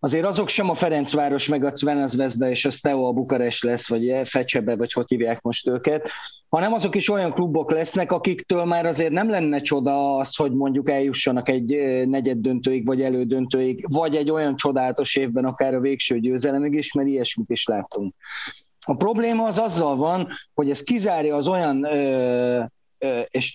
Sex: male